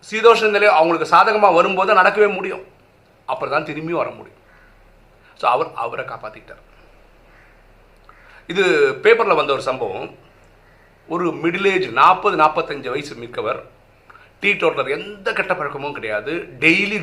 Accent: native